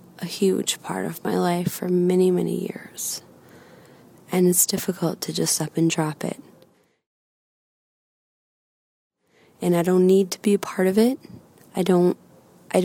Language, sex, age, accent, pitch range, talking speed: English, female, 20-39, American, 170-185 Hz, 145 wpm